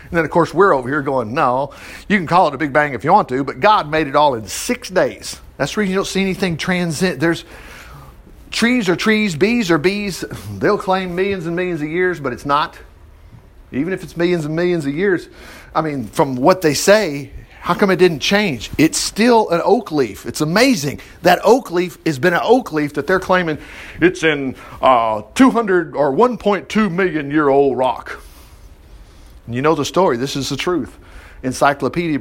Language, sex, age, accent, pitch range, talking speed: English, male, 50-69, American, 140-205 Hz, 205 wpm